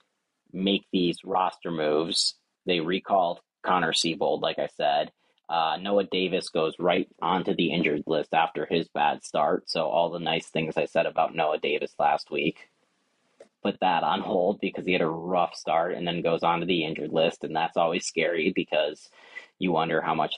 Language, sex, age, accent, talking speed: English, male, 30-49, American, 185 wpm